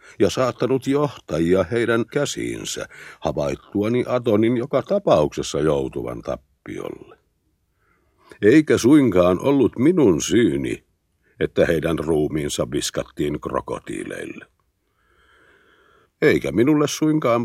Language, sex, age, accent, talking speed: Finnish, male, 60-79, native, 85 wpm